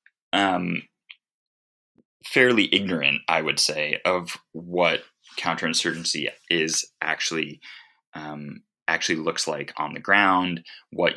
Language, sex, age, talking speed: English, male, 20-39, 100 wpm